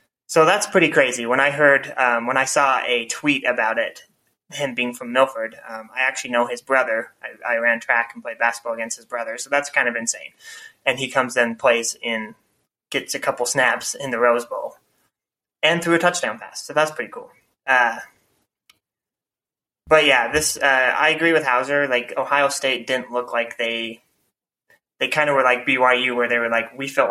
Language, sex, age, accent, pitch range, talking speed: English, male, 20-39, American, 120-140 Hz, 200 wpm